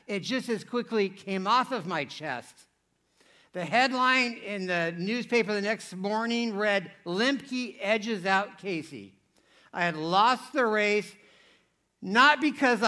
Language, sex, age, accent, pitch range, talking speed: English, male, 60-79, American, 195-235 Hz, 135 wpm